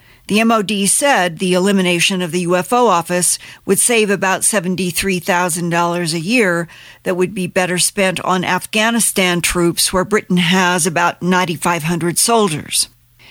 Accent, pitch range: American, 175-210 Hz